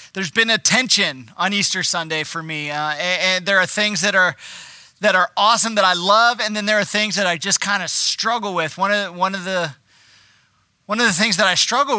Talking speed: 240 wpm